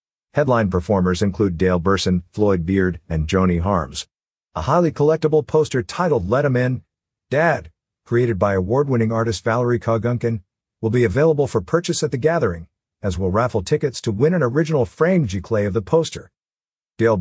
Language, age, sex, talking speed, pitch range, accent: English, 50-69, male, 165 wpm, 95-120 Hz, American